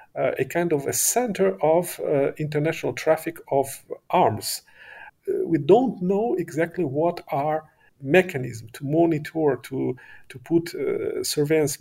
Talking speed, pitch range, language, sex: 135 wpm, 140-185 Hz, English, male